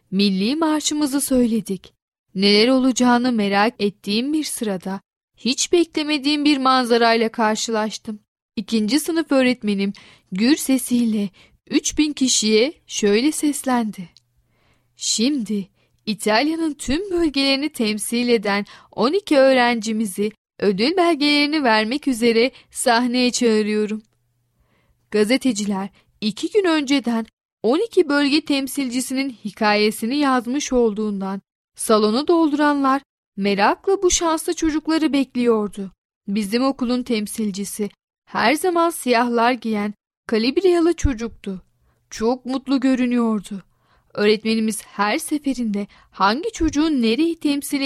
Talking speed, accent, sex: 95 wpm, native, female